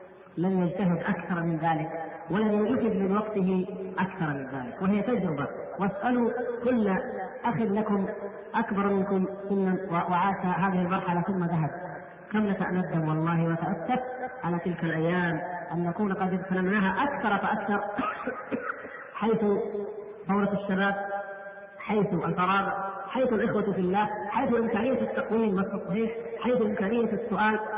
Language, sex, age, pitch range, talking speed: Arabic, female, 40-59, 185-210 Hz, 120 wpm